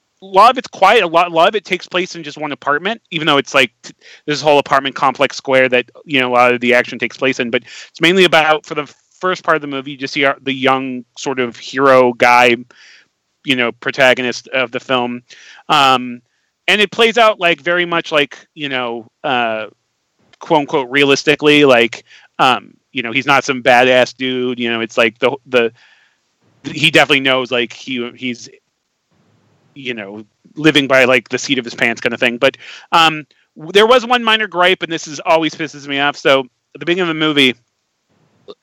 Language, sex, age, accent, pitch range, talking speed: English, male, 30-49, American, 125-160 Hz, 205 wpm